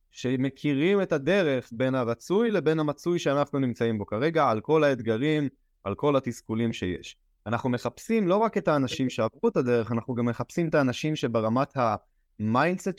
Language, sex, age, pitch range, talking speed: Hebrew, male, 20-39, 110-145 Hz, 160 wpm